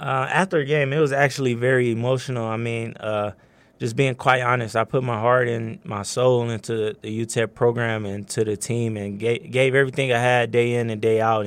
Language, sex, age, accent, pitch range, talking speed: English, male, 20-39, American, 110-130 Hz, 225 wpm